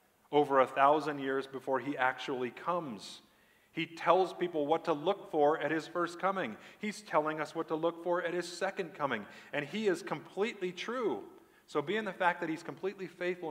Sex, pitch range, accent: male, 115-165 Hz, American